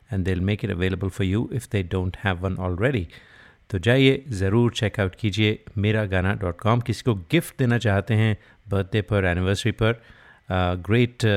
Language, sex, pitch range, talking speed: Hindi, male, 95-120 Hz, 175 wpm